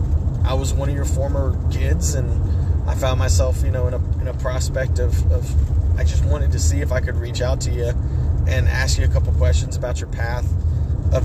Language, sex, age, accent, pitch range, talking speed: English, male, 30-49, American, 80-85 Hz, 220 wpm